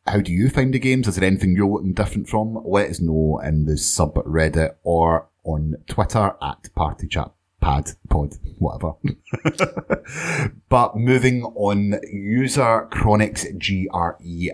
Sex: male